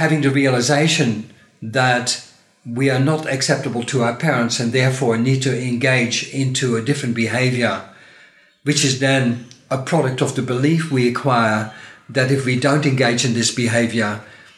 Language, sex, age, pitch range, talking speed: English, male, 50-69, 125-155 Hz, 155 wpm